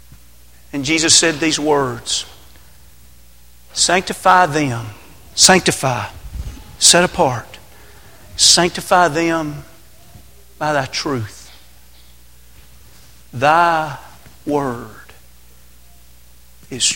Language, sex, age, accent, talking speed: English, male, 50-69, American, 65 wpm